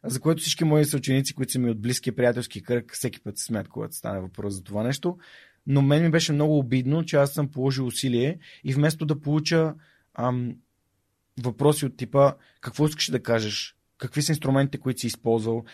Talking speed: 195 wpm